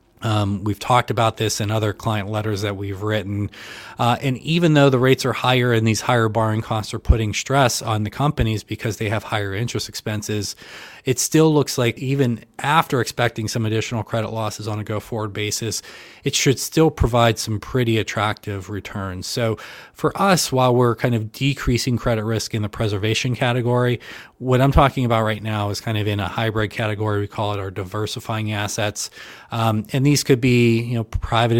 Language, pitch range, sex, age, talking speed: English, 105-120 Hz, male, 20-39, 195 wpm